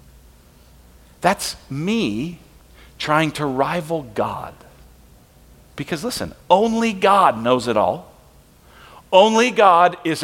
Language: English